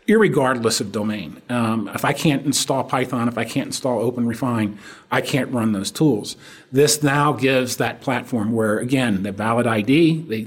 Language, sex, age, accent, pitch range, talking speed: English, male, 40-59, American, 115-140 Hz, 170 wpm